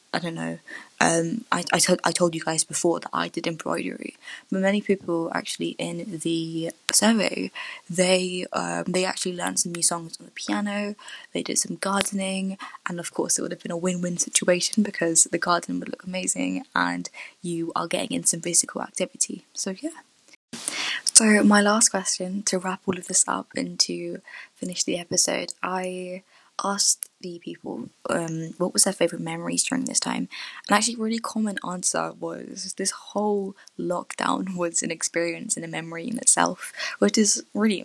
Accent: British